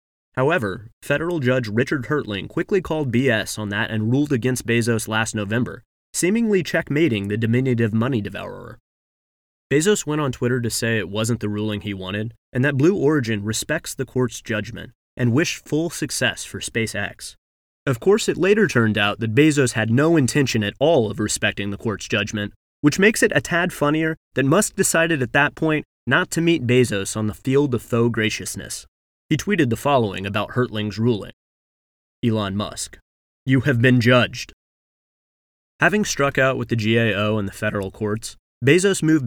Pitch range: 110-145 Hz